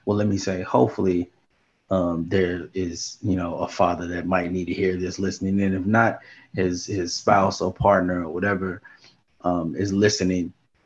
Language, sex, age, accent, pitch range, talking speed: English, male, 30-49, American, 95-105 Hz, 175 wpm